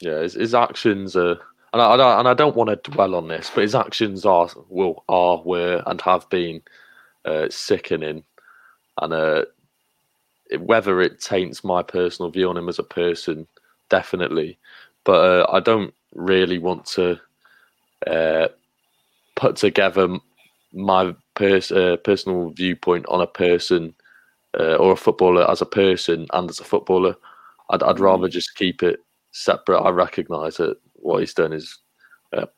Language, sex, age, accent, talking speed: English, male, 20-39, British, 160 wpm